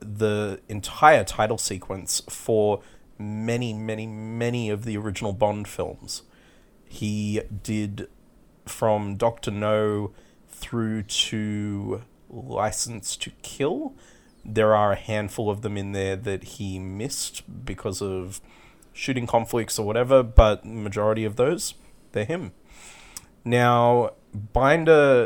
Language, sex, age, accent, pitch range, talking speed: English, male, 30-49, Australian, 100-115 Hz, 115 wpm